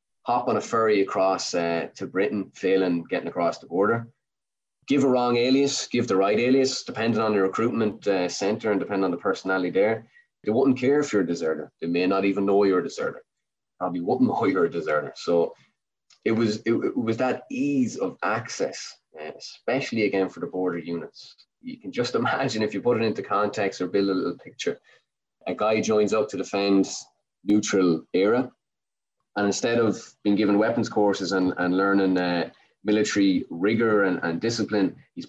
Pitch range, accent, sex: 95-120 Hz, Irish, male